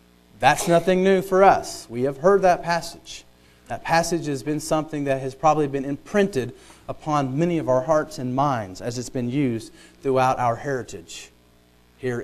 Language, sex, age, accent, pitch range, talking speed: English, male, 40-59, American, 125-165 Hz, 170 wpm